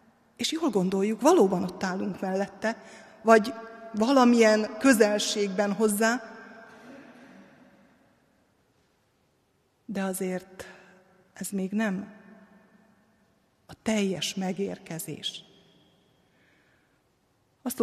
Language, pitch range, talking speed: Hungarian, 200-245 Hz, 65 wpm